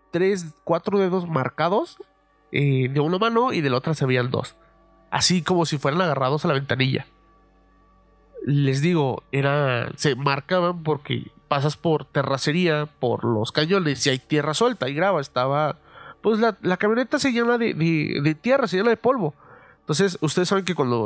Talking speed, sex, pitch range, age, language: 175 wpm, male, 135-185 Hz, 30-49, Spanish